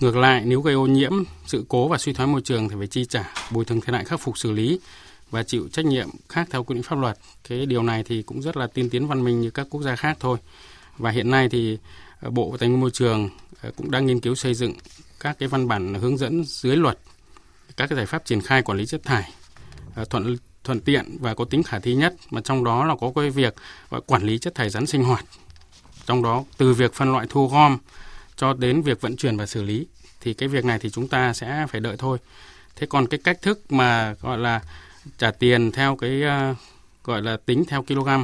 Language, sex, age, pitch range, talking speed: Vietnamese, male, 20-39, 115-140 Hz, 240 wpm